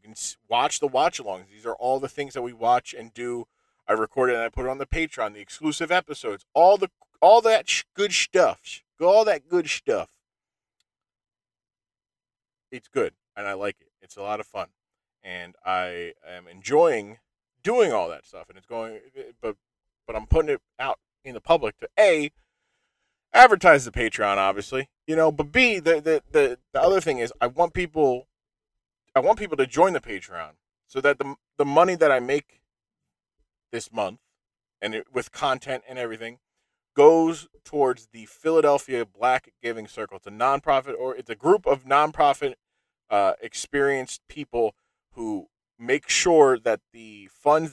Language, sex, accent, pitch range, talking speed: English, male, American, 110-160 Hz, 170 wpm